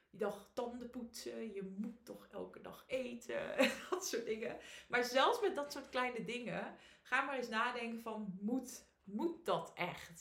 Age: 20-39